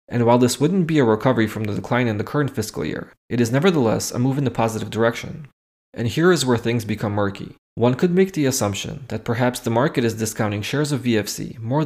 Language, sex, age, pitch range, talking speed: English, male, 20-39, 110-135 Hz, 235 wpm